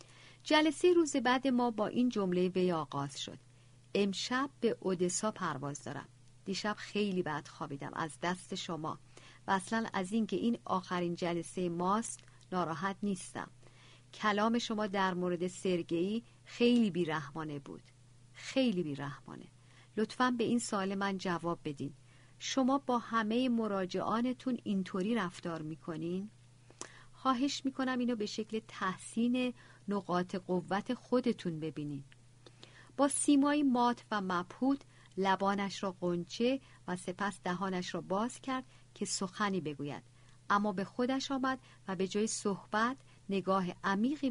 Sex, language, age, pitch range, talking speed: female, Persian, 50-69, 155-220 Hz, 125 wpm